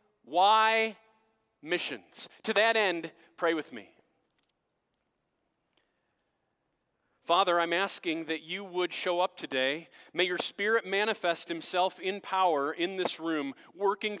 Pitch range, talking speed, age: 175-230 Hz, 120 wpm, 40-59